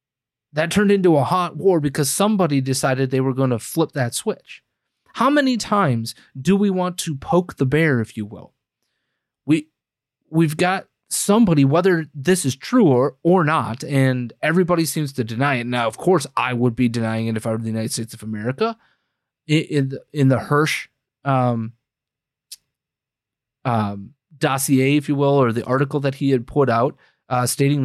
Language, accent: English, American